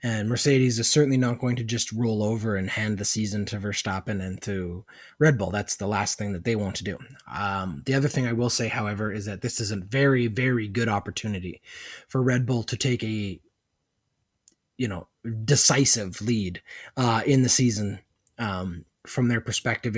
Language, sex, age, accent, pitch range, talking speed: English, male, 20-39, American, 100-120 Hz, 190 wpm